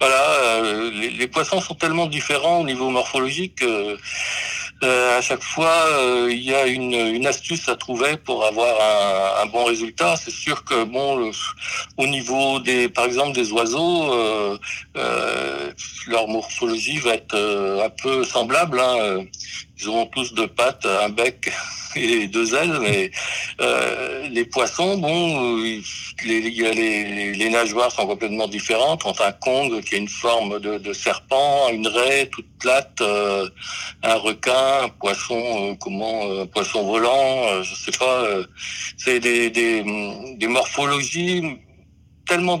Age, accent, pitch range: 60-79, French, 105-140 Hz